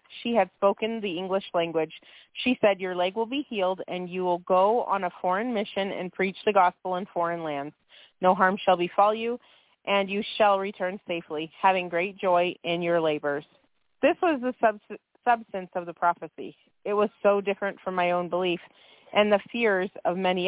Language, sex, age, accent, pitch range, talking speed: English, female, 30-49, American, 180-210 Hz, 190 wpm